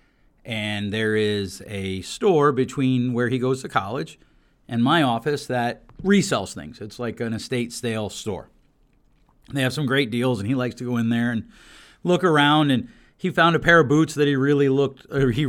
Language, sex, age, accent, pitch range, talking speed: English, male, 40-59, American, 130-190 Hz, 200 wpm